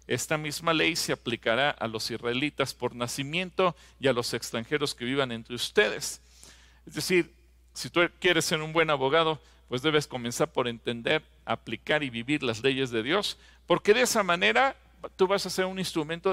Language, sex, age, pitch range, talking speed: English, male, 50-69, 115-165 Hz, 180 wpm